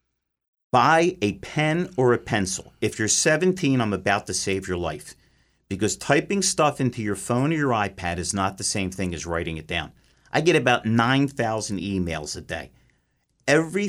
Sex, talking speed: male, 175 wpm